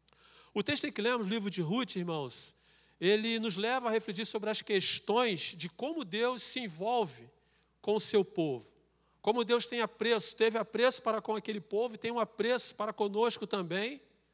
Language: Portuguese